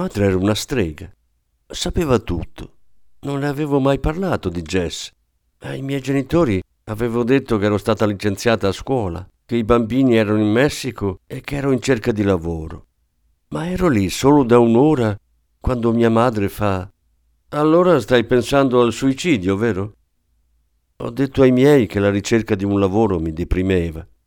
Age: 50-69